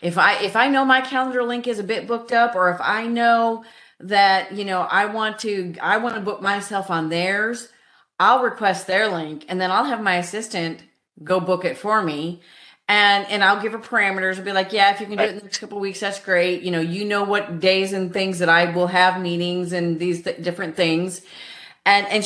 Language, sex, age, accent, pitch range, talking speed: English, female, 30-49, American, 175-225 Hz, 235 wpm